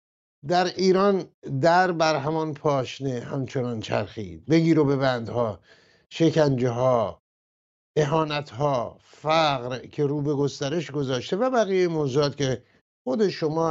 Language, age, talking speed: English, 50-69, 120 wpm